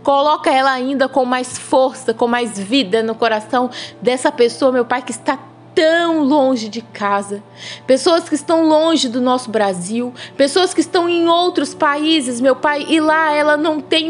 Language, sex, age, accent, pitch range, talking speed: Portuguese, female, 20-39, Brazilian, 275-355 Hz, 175 wpm